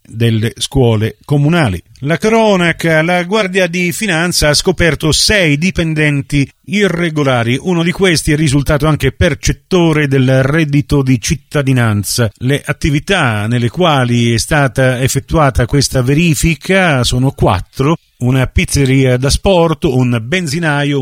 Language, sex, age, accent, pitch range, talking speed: Italian, male, 40-59, native, 125-165 Hz, 120 wpm